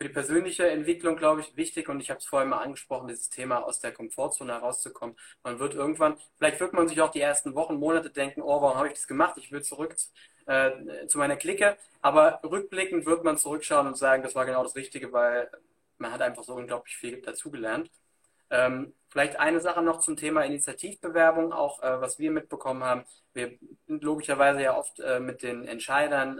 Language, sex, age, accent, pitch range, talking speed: German, male, 20-39, German, 135-175 Hz, 200 wpm